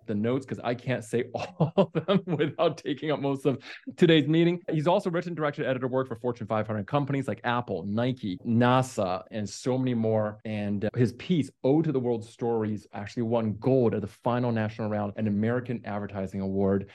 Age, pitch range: 20-39, 110-130 Hz